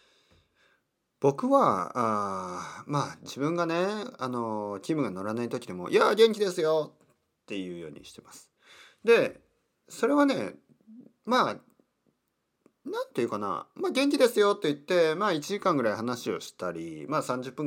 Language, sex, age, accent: Japanese, male, 40-59, native